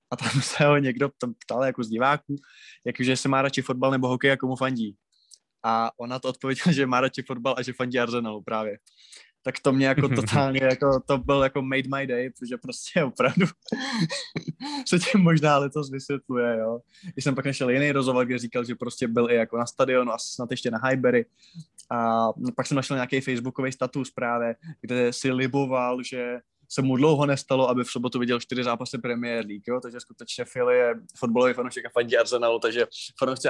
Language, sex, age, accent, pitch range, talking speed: Czech, male, 20-39, native, 120-140 Hz, 195 wpm